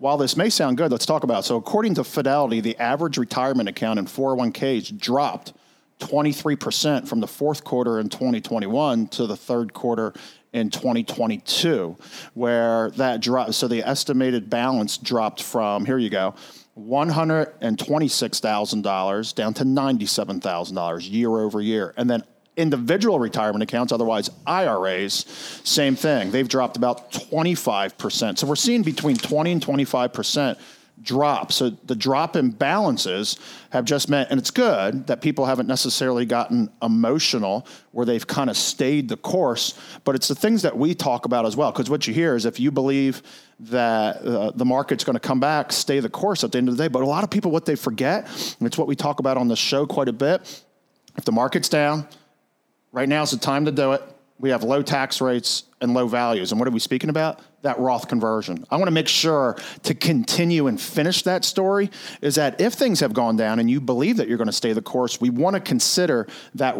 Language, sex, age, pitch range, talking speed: English, male, 40-59, 120-150 Hz, 190 wpm